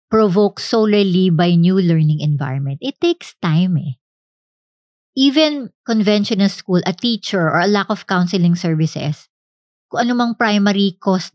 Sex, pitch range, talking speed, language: male, 155-200 Hz, 130 wpm, English